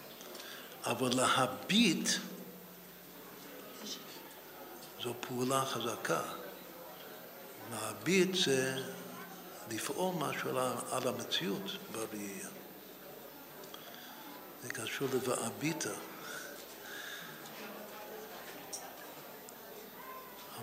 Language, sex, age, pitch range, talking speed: Hebrew, male, 60-79, 140-185 Hz, 45 wpm